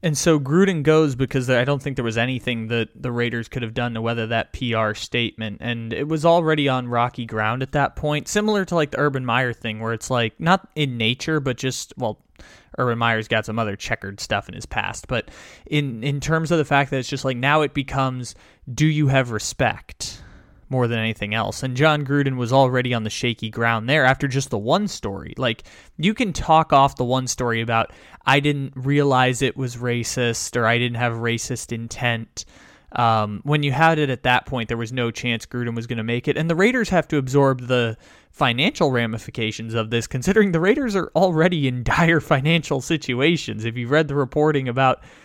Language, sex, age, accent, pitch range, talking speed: English, male, 20-39, American, 115-150 Hz, 210 wpm